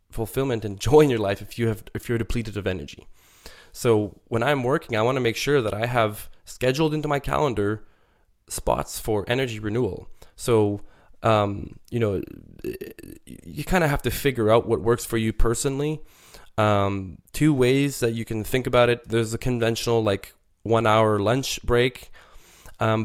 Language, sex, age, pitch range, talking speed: English, male, 20-39, 100-120 Hz, 175 wpm